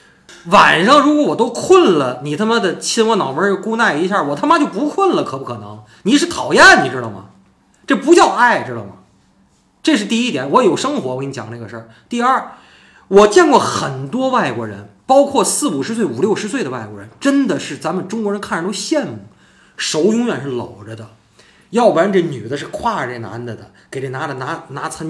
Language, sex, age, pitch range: Chinese, male, 20-39, 160-265 Hz